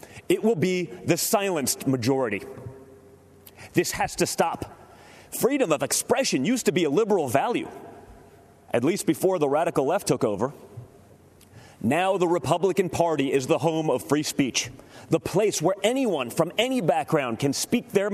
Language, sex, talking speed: English, male, 155 wpm